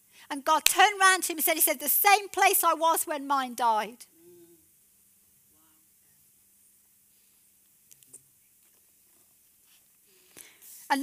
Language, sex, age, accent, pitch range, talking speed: English, female, 40-59, British, 260-345 Hz, 105 wpm